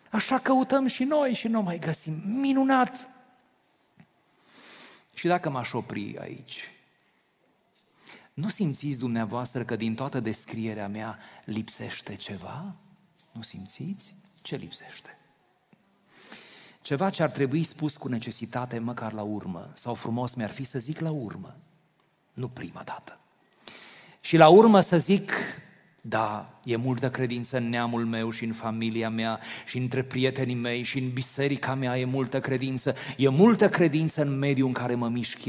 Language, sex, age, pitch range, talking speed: Romanian, male, 40-59, 120-175 Hz, 145 wpm